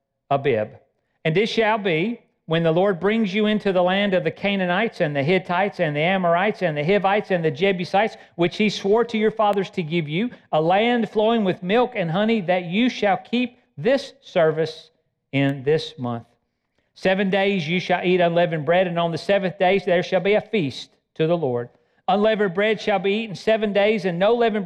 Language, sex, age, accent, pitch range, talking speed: English, male, 50-69, American, 155-205 Hz, 200 wpm